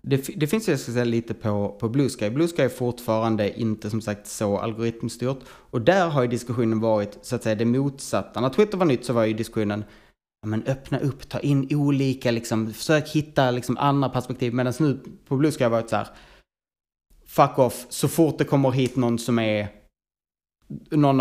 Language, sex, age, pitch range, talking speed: Swedish, male, 20-39, 110-135 Hz, 200 wpm